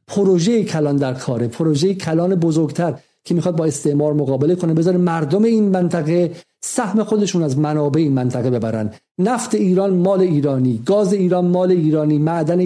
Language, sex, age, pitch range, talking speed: Persian, male, 50-69, 155-190 Hz, 155 wpm